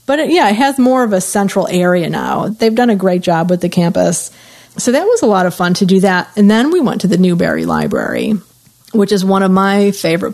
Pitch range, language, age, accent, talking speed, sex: 180-210 Hz, English, 40-59, American, 250 wpm, female